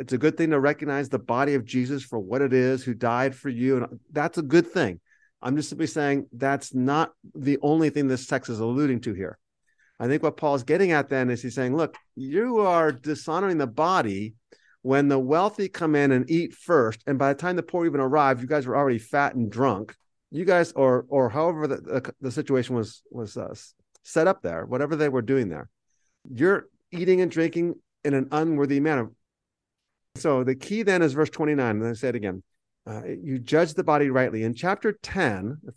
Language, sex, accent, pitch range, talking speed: English, male, American, 125-155 Hz, 215 wpm